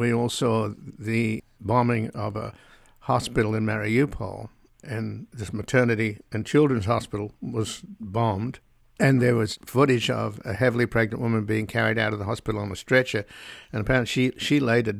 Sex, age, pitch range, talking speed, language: male, 60-79, 110-130 Hz, 165 wpm, English